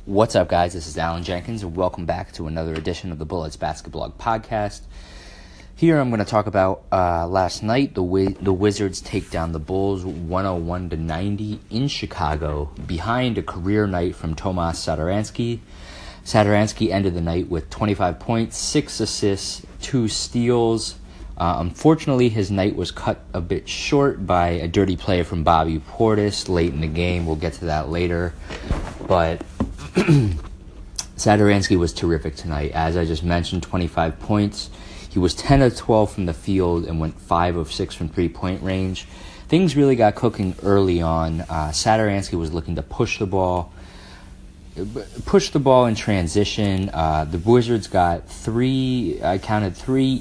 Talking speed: 165 wpm